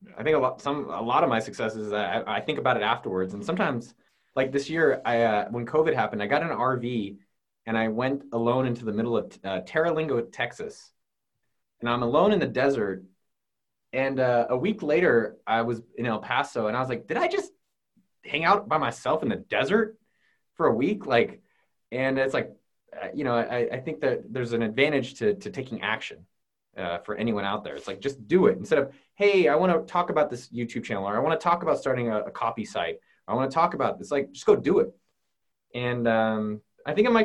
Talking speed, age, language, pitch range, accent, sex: 230 wpm, 20-39, English, 115-185 Hz, American, male